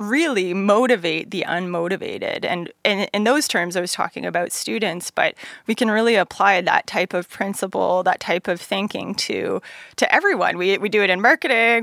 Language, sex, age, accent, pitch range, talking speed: English, female, 20-39, American, 180-225 Hz, 185 wpm